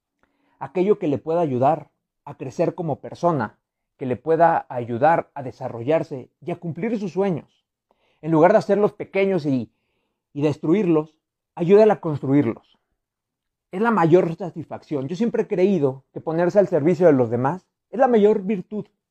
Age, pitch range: 40-59, 145-195 Hz